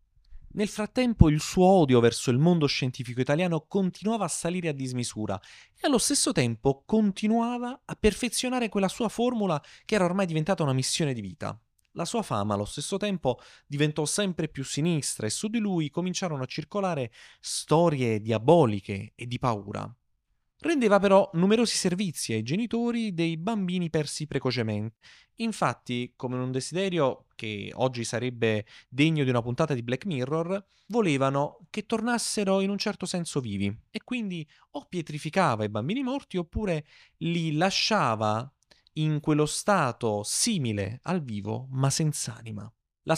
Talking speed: 150 wpm